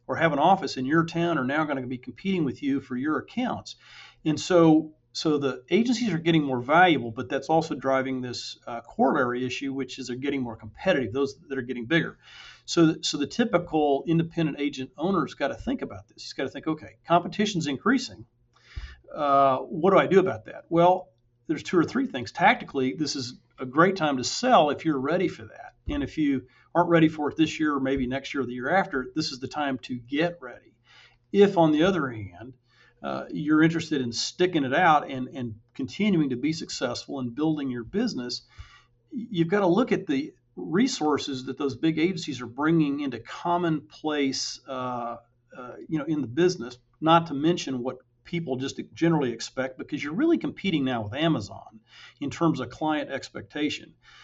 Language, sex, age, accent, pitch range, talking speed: English, male, 40-59, American, 130-165 Hz, 200 wpm